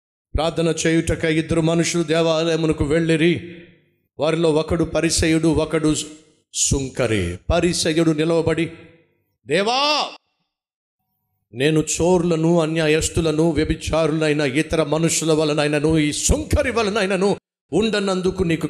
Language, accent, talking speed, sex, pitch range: Telugu, native, 75 wpm, male, 135-190 Hz